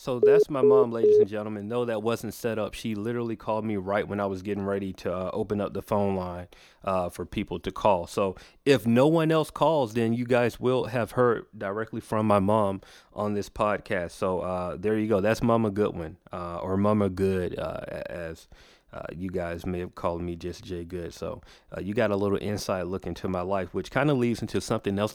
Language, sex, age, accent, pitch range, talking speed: English, male, 30-49, American, 95-115 Hz, 225 wpm